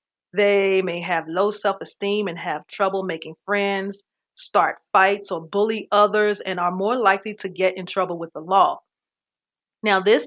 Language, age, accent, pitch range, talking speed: English, 40-59, American, 180-205 Hz, 165 wpm